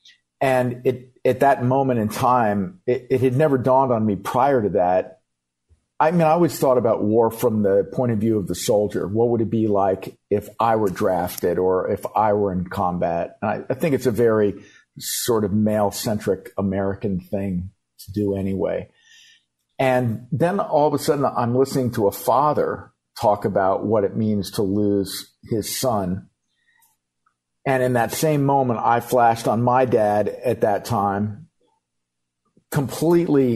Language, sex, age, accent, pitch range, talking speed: English, male, 50-69, American, 100-130 Hz, 170 wpm